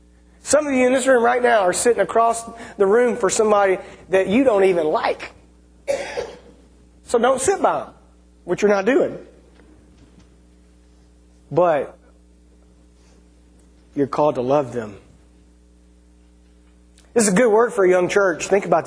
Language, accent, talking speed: English, American, 145 wpm